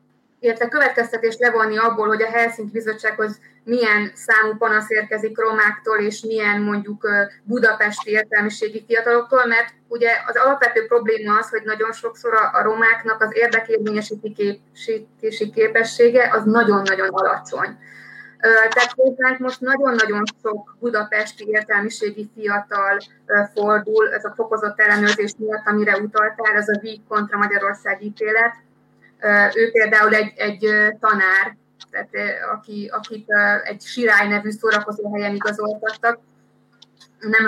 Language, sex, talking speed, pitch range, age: Hungarian, female, 115 wpm, 210-230 Hz, 20-39